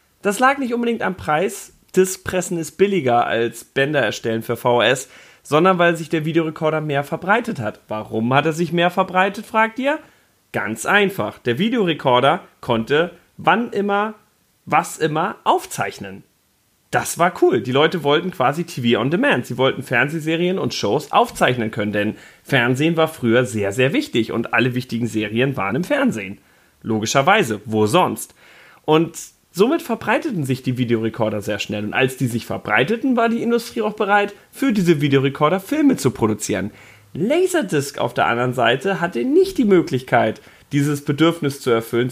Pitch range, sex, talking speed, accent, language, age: 120-200 Hz, male, 160 wpm, German, German, 30-49